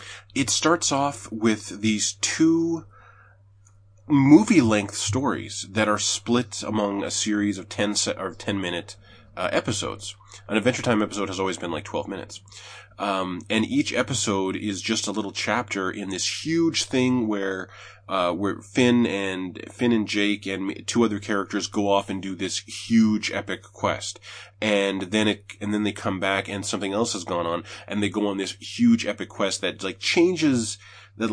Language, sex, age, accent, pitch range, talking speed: English, male, 20-39, American, 100-115 Hz, 165 wpm